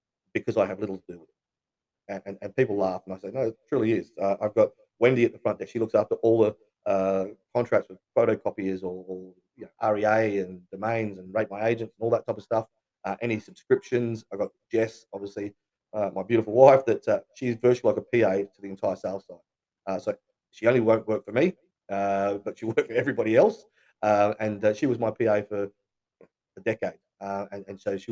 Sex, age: male, 30-49